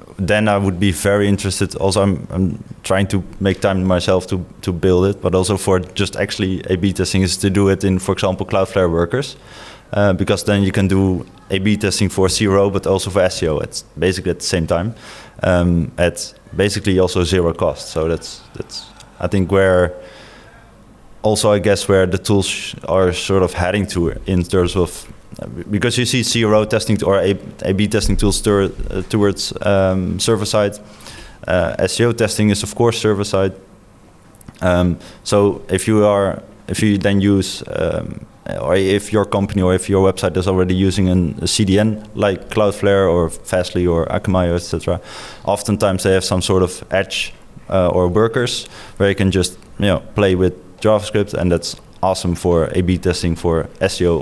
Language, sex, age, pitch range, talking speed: English, male, 20-39, 90-105 Hz, 180 wpm